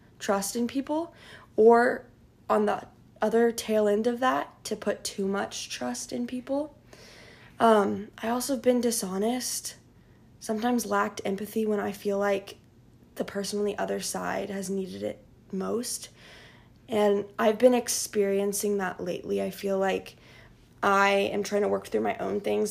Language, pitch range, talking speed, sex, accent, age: English, 185-220 Hz, 155 wpm, female, American, 20-39